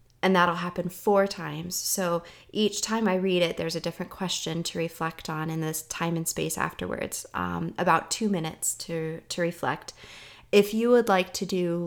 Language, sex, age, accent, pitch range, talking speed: English, female, 20-39, American, 165-200 Hz, 185 wpm